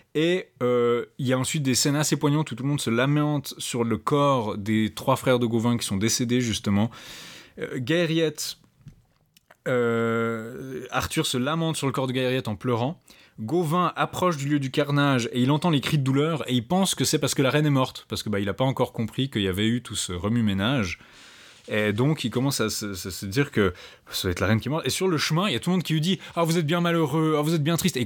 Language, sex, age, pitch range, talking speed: French, male, 20-39, 115-145 Hz, 265 wpm